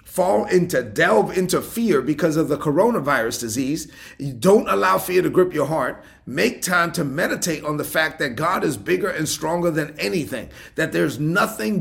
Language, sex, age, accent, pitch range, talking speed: English, male, 40-59, American, 145-185 Hz, 180 wpm